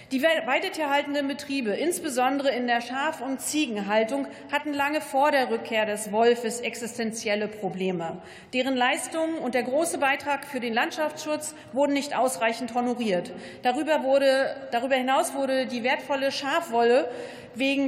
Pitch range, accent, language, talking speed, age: 245-295 Hz, German, German, 130 wpm, 40-59